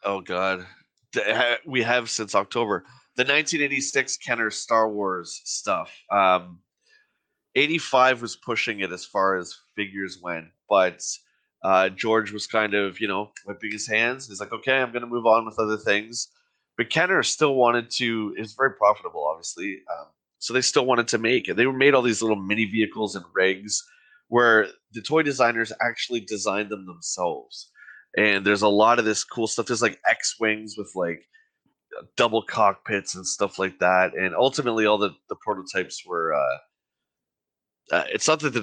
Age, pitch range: 20-39, 95-120 Hz